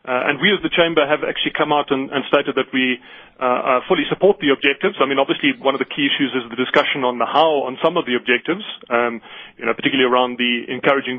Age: 30-49